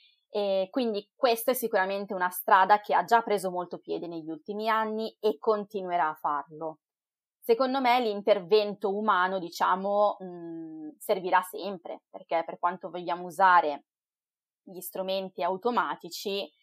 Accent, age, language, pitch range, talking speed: native, 20-39, Italian, 175-210 Hz, 125 wpm